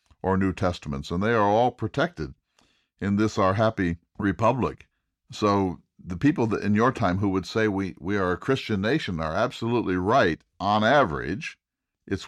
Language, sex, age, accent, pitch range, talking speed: English, male, 60-79, American, 85-110 Hz, 170 wpm